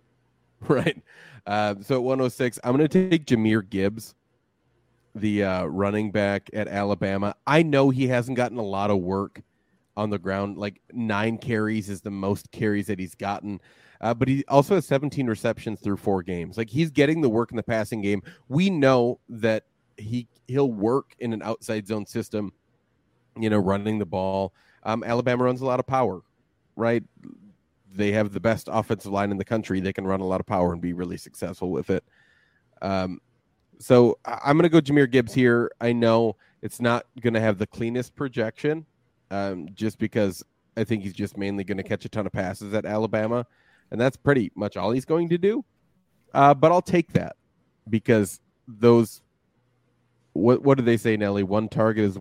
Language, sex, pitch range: English, male, 100-125 Hz